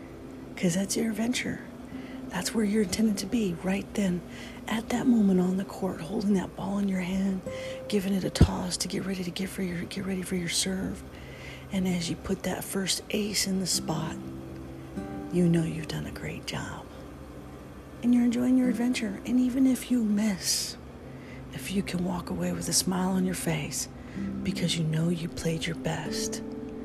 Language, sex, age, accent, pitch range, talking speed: English, female, 40-59, American, 135-200 Hz, 185 wpm